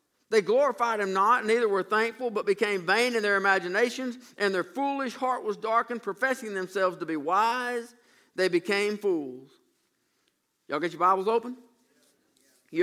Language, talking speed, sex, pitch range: English, 155 wpm, male, 160-235 Hz